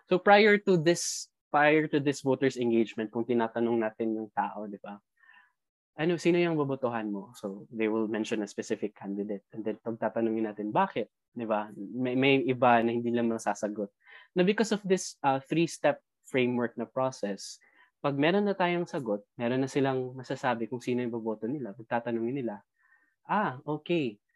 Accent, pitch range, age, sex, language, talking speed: Filipino, 110-145 Hz, 20-39, male, English, 170 wpm